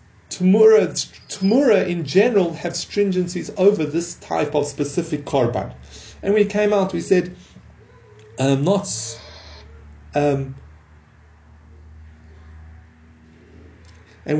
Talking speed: 90 wpm